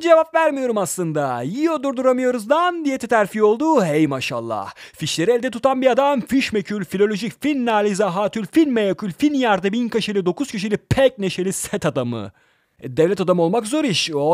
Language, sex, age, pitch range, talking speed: Turkish, male, 40-59, 160-225 Hz, 155 wpm